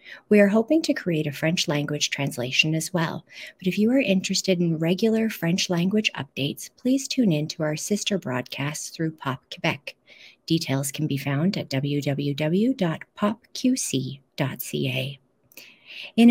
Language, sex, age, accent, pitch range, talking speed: English, female, 40-59, American, 160-210 Hz, 140 wpm